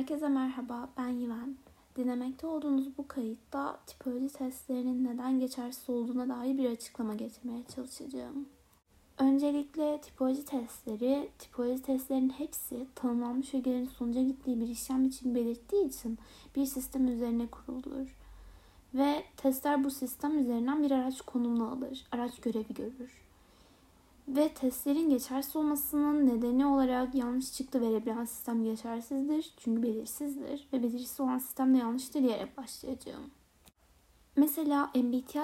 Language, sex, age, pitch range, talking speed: Turkish, female, 20-39, 240-275 Hz, 125 wpm